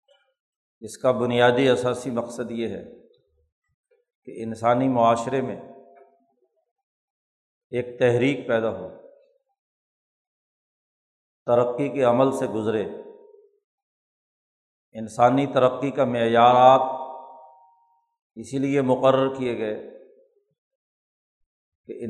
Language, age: Urdu, 50-69